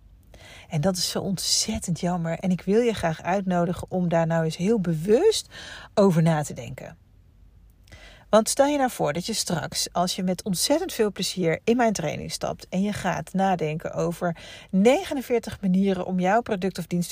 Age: 40-59